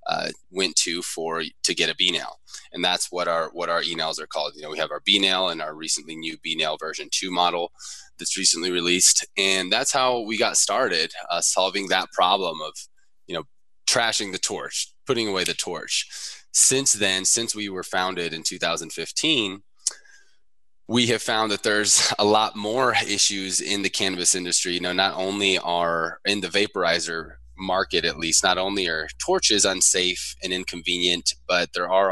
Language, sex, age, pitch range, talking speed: English, male, 20-39, 80-100 Hz, 185 wpm